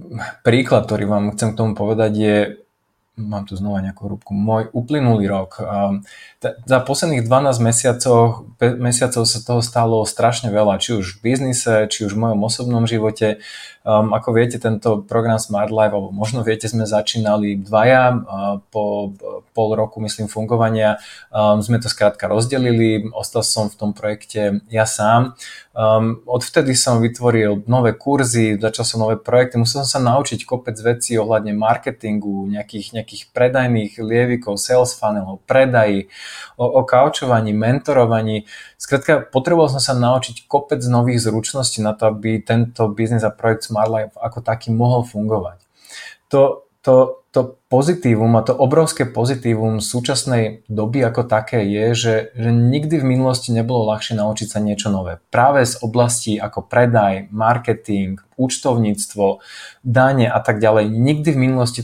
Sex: male